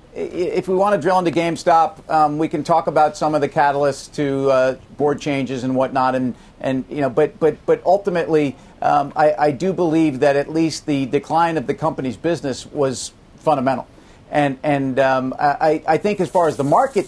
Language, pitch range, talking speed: English, 140-170 Hz, 205 wpm